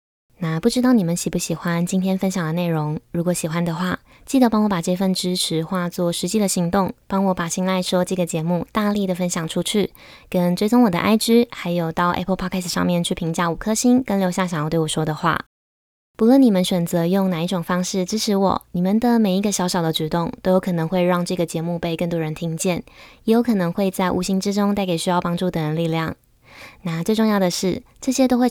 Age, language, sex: 20-39, Chinese, female